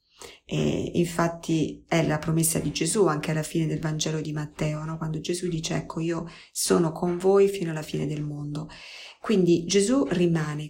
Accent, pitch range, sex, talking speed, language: native, 155-180 Hz, female, 170 wpm, Italian